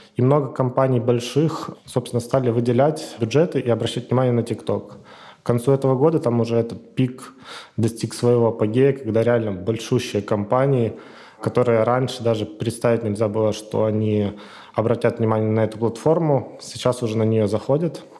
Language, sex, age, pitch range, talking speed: Russian, male, 20-39, 115-130 Hz, 150 wpm